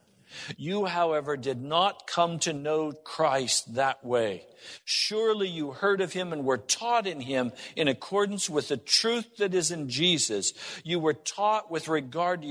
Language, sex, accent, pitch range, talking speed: English, male, American, 125-185 Hz, 170 wpm